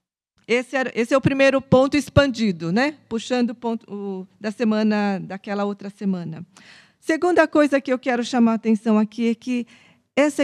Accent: Brazilian